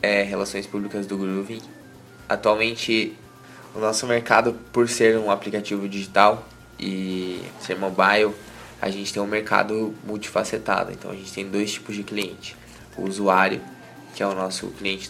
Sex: male